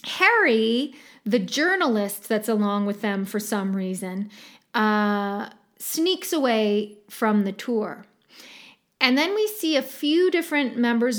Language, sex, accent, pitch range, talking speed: English, female, American, 215-265 Hz, 130 wpm